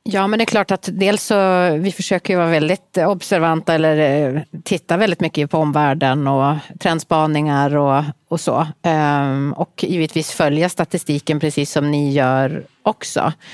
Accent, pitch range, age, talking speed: native, 150-180 Hz, 30-49, 155 wpm